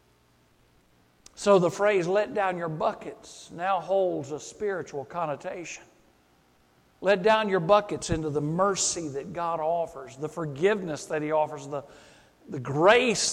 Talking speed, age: 135 wpm, 60-79